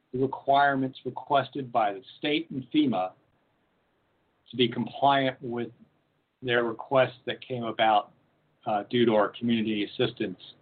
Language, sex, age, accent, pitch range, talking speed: English, male, 50-69, American, 105-130 Hz, 125 wpm